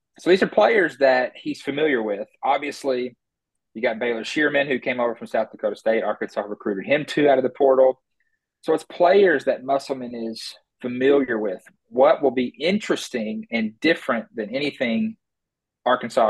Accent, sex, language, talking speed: American, male, English, 165 wpm